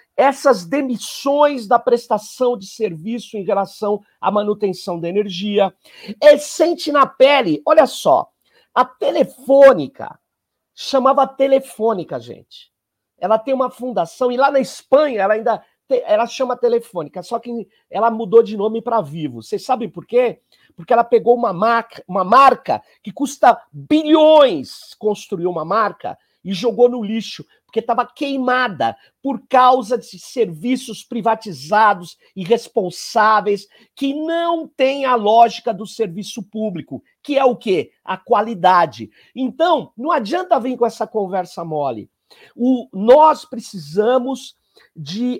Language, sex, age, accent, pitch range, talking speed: Portuguese, male, 50-69, Brazilian, 205-265 Hz, 130 wpm